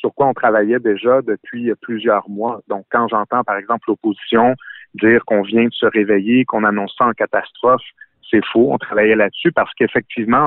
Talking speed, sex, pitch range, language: 185 wpm, male, 105-125 Hz, French